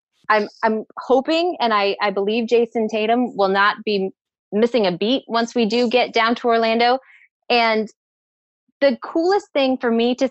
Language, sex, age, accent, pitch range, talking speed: English, female, 20-39, American, 200-255 Hz, 175 wpm